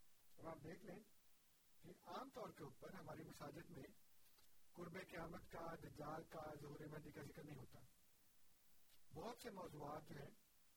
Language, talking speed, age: Urdu, 110 wpm, 50-69